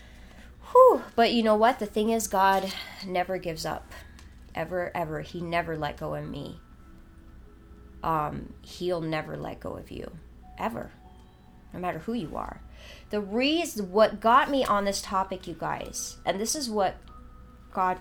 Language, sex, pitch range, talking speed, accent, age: English, female, 150-215 Hz, 155 wpm, American, 30-49